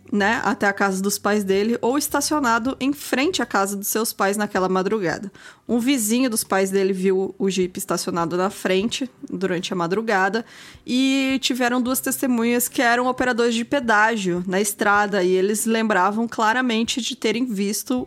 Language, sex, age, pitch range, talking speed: Portuguese, female, 20-39, 200-255 Hz, 165 wpm